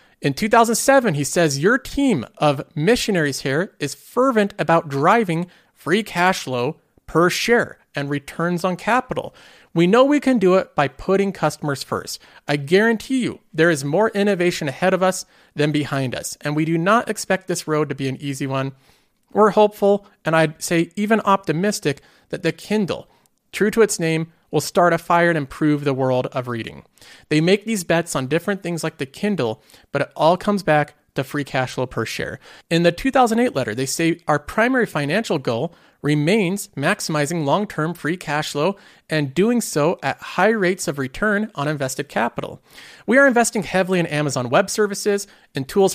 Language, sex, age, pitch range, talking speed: English, male, 40-59, 150-200 Hz, 180 wpm